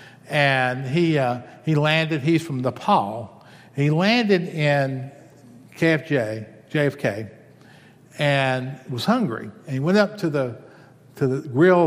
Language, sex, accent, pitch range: English, male, American, 135-185 Hz